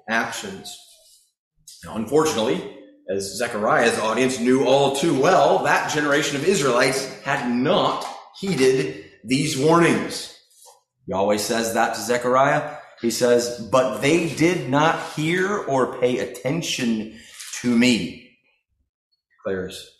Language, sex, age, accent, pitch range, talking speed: English, male, 30-49, American, 115-155 Hz, 115 wpm